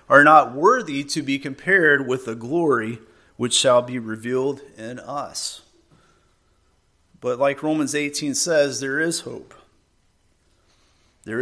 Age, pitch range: 40-59, 125-160 Hz